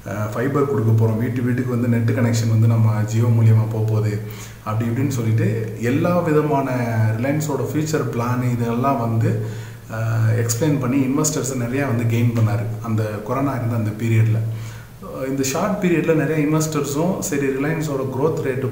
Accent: native